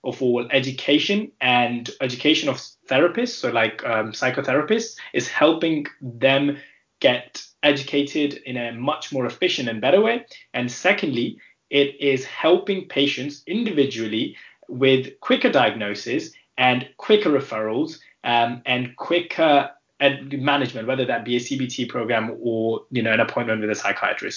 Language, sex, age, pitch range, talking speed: English, male, 20-39, 125-165 Hz, 140 wpm